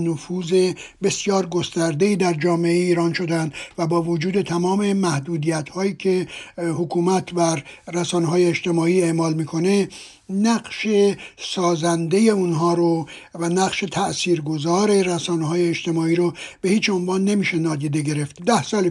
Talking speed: 115 wpm